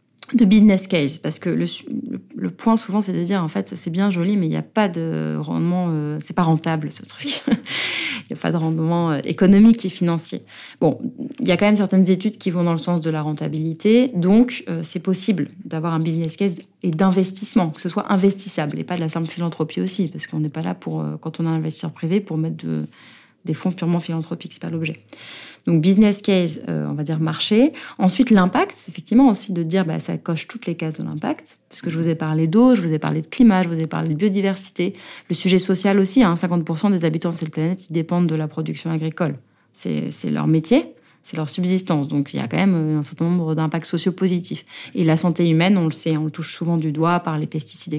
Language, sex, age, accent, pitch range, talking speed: French, female, 30-49, French, 160-190 Hz, 240 wpm